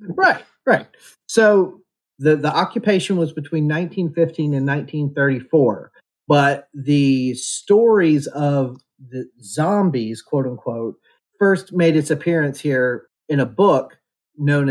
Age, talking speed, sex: 30-49, 115 wpm, male